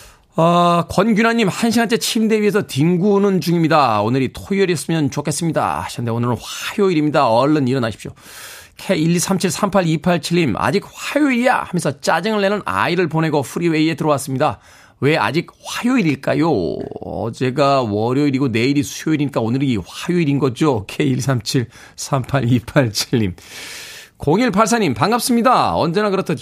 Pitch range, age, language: 125-185 Hz, 40-59, Korean